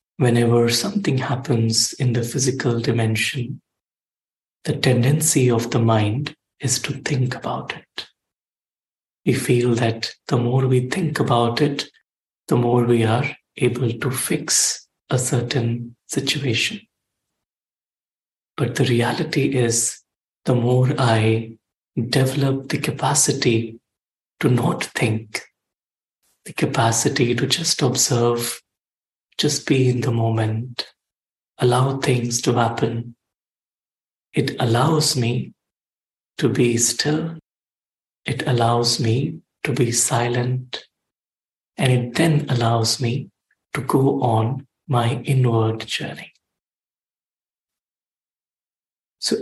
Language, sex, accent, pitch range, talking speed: English, male, Indian, 115-140 Hz, 105 wpm